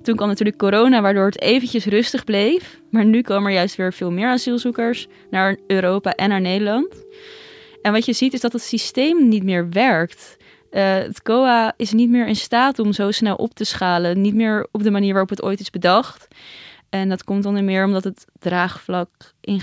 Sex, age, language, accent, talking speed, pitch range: female, 20-39, Dutch, Dutch, 205 wpm, 195-230 Hz